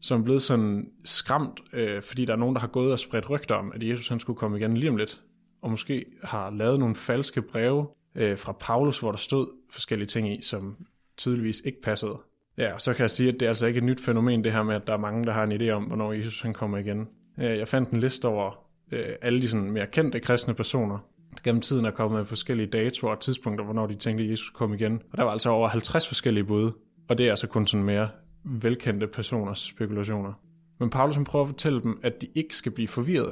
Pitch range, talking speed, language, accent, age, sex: 110-130 Hz, 245 wpm, Danish, native, 20-39, male